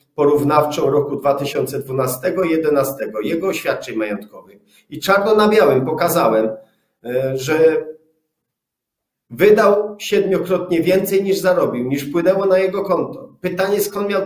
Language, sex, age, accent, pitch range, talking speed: Polish, male, 40-59, native, 140-185 Hz, 100 wpm